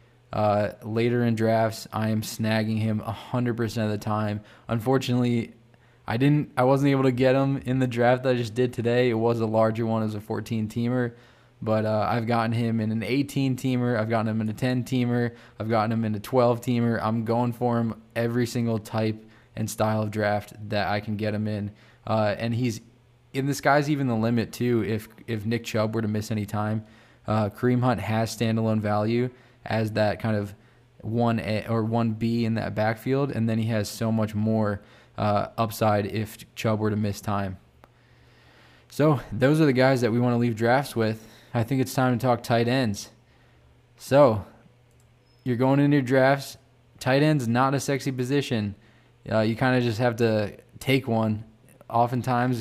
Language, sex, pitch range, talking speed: English, male, 110-125 Hz, 195 wpm